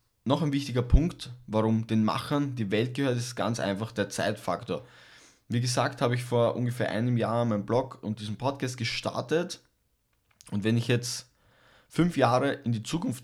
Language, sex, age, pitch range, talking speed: German, male, 20-39, 110-130 Hz, 170 wpm